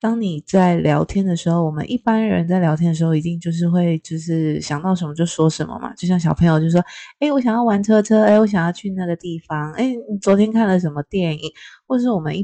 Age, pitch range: 20-39, 155-200 Hz